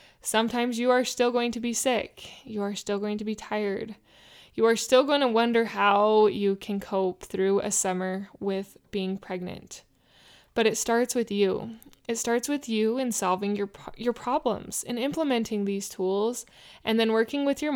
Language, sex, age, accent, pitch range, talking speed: English, female, 20-39, American, 205-245 Hz, 185 wpm